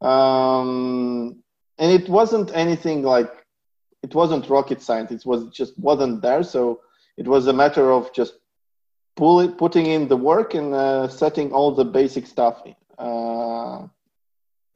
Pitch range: 125-150 Hz